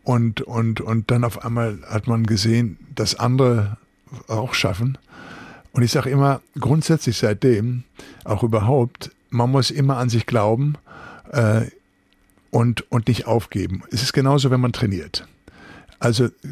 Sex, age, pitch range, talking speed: male, 50-69, 105-130 Hz, 140 wpm